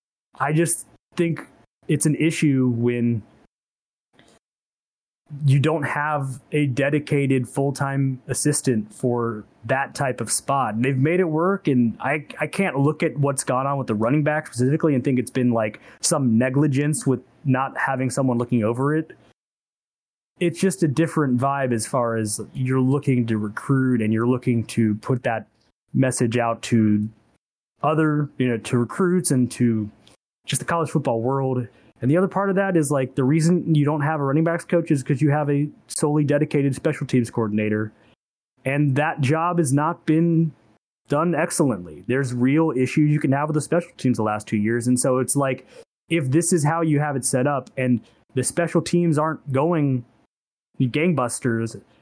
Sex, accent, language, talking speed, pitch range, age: male, American, English, 180 wpm, 125-155 Hz, 20-39